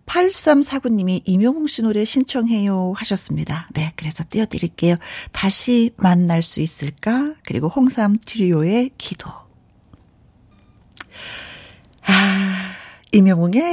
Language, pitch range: Korean, 170-230 Hz